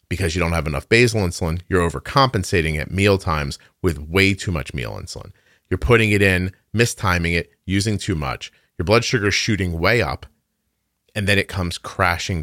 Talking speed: 180 wpm